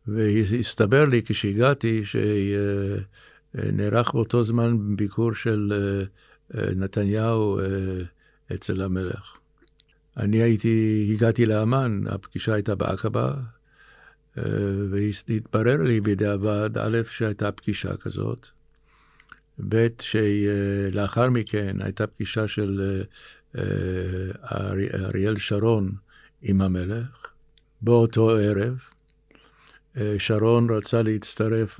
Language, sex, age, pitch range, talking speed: Hebrew, male, 60-79, 100-115 Hz, 75 wpm